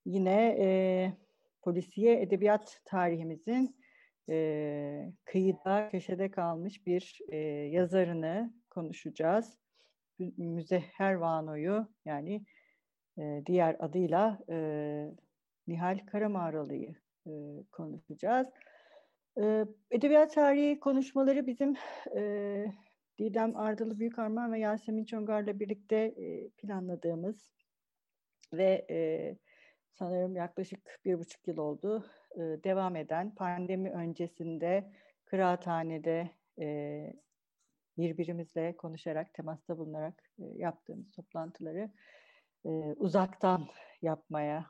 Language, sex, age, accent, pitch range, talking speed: Turkish, female, 60-79, native, 170-220 Hz, 80 wpm